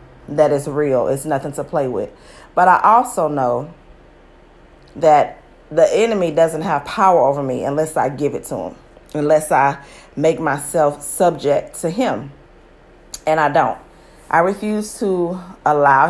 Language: English